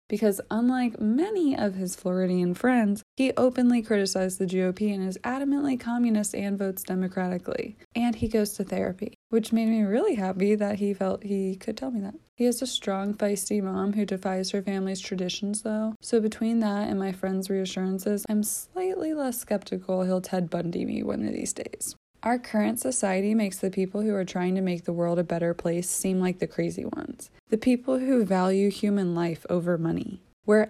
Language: English